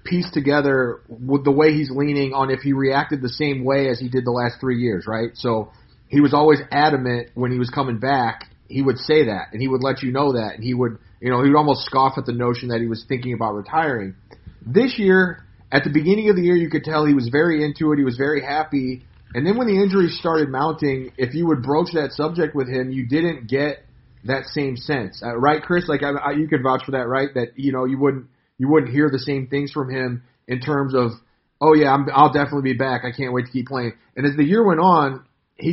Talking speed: 250 wpm